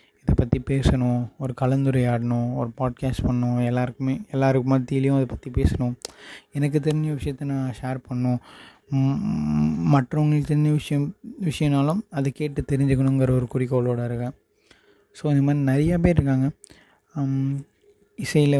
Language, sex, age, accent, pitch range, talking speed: Tamil, male, 20-39, native, 120-140 Hz, 120 wpm